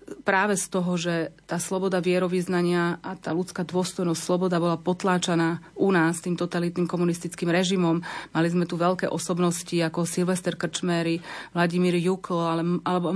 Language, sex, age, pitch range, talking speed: Slovak, female, 30-49, 165-185 Hz, 140 wpm